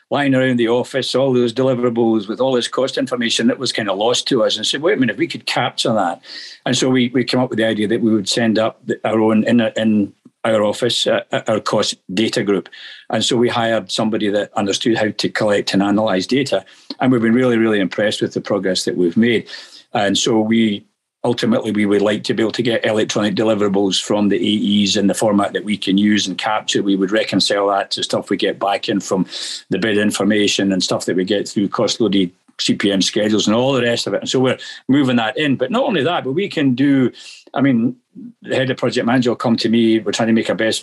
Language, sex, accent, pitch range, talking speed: English, male, British, 105-125 Hz, 245 wpm